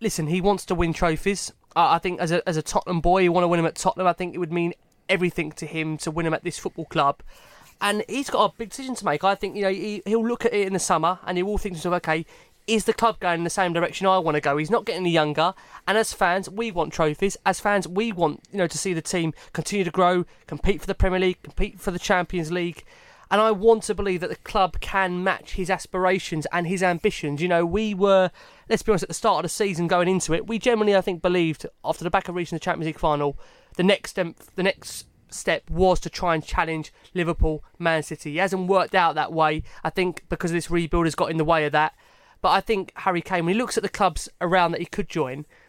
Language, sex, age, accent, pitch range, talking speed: English, male, 20-39, British, 165-195 Hz, 260 wpm